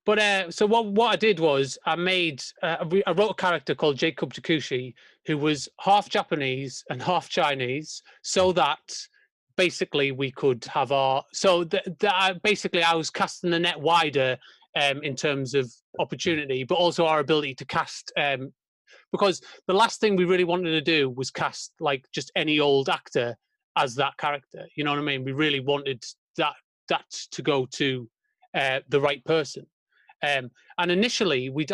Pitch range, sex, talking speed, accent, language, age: 145-185 Hz, male, 175 wpm, British, English, 30-49